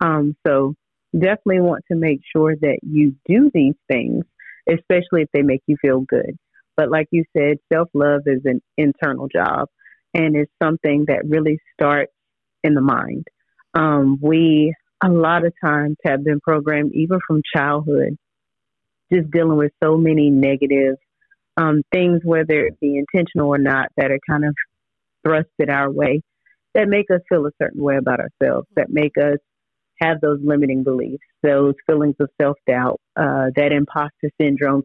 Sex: female